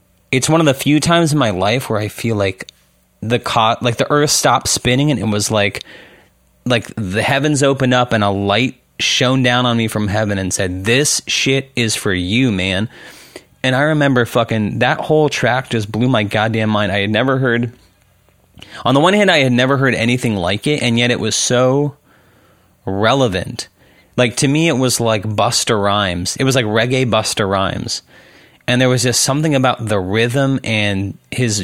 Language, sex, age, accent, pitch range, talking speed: English, male, 30-49, American, 105-130 Hz, 195 wpm